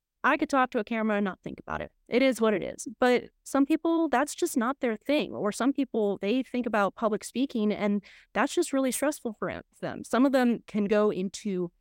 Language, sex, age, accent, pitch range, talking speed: English, female, 30-49, American, 200-260 Hz, 230 wpm